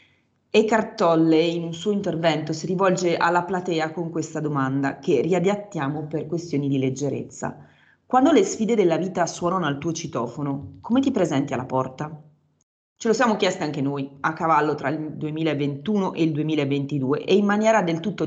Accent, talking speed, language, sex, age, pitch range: native, 170 wpm, Italian, female, 30-49, 145-190 Hz